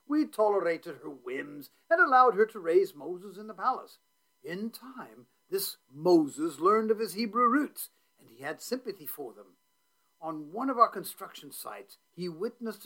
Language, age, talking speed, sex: English, 50-69, 170 wpm, male